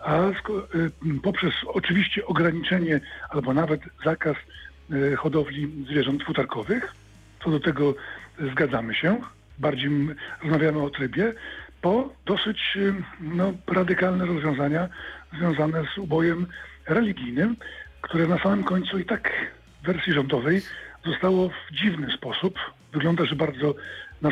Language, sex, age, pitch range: Polish, male, 50-69, 145-180 Hz